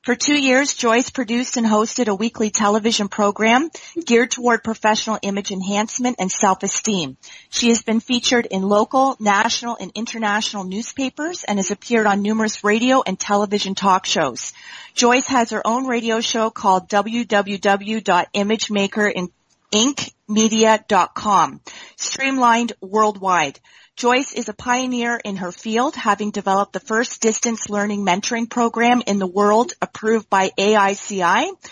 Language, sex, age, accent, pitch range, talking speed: English, female, 30-49, American, 200-235 Hz, 130 wpm